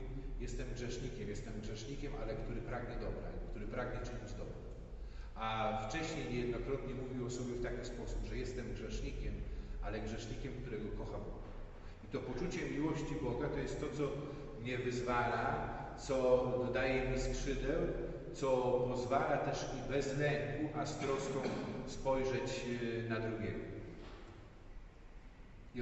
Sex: male